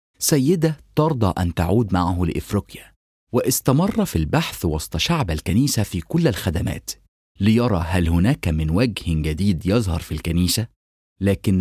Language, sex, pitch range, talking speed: English, male, 85-125 Hz, 130 wpm